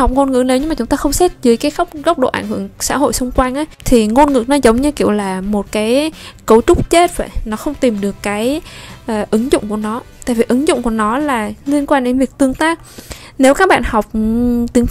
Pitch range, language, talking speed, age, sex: 210-275 Hz, Vietnamese, 250 wpm, 10-29, female